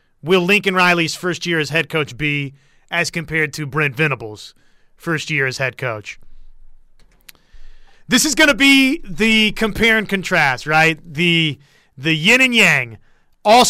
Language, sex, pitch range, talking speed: English, male, 160-215 Hz, 155 wpm